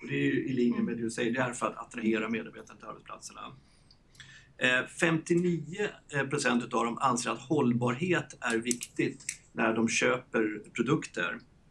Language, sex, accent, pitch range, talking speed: Swedish, male, native, 115-145 Hz, 150 wpm